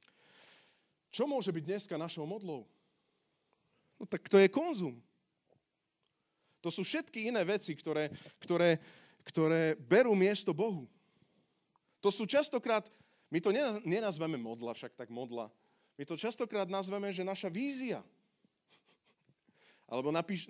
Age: 30-49